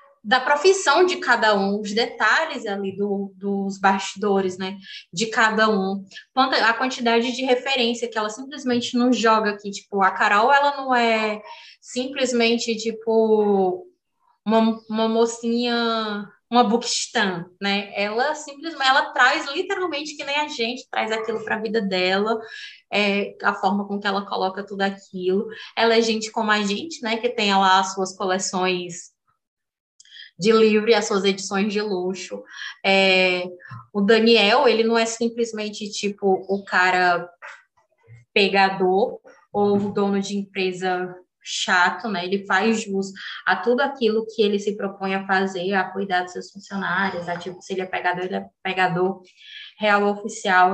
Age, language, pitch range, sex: 20-39, Portuguese, 195-235 Hz, female